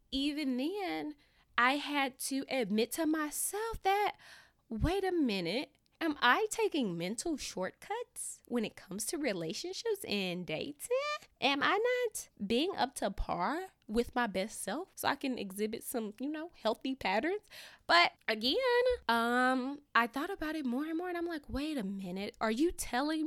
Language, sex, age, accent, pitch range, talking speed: English, female, 20-39, American, 220-325 Hz, 165 wpm